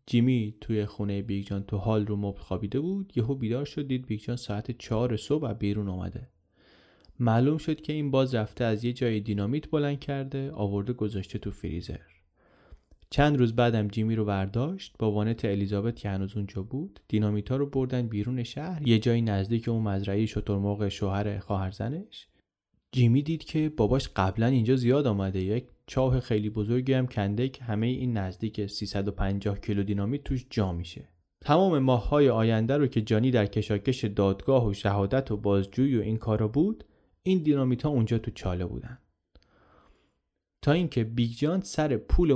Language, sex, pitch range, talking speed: Persian, male, 100-130 Hz, 165 wpm